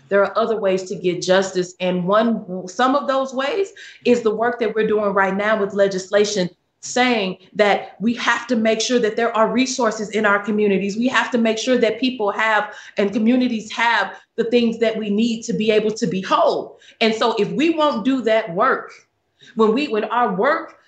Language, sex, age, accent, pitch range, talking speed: English, female, 30-49, American, 205-260 Hz, 205 wpm